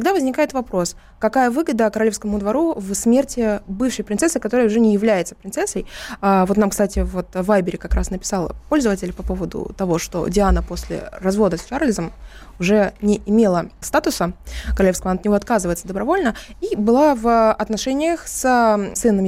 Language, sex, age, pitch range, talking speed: Russian, female, 20-39, 195-240 Hz, 155 wpm